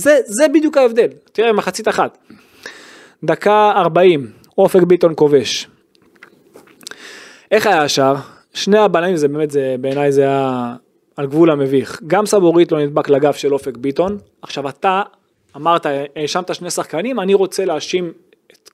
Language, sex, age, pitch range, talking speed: Hebrew, male, 20-39, 160-270 Hz, 140 wpm